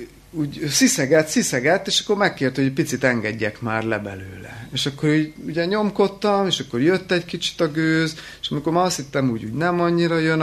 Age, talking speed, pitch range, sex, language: 30-49, 195 wpm, 115-160 Hz, male, Hungarian